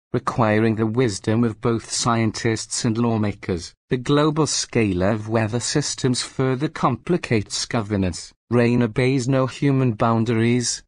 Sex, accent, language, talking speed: male, British, English, 120 wpm